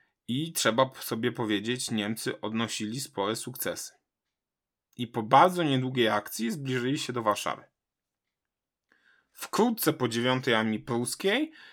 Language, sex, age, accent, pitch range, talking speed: Polish, male, 20-39, native, 110-140 Hz, 115 wpm